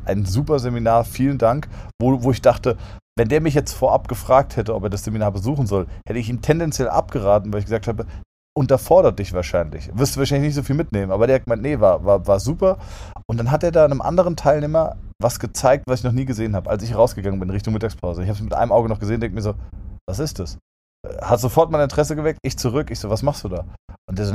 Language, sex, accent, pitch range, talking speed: German, male, German, 100-130 Hz, 250 wpm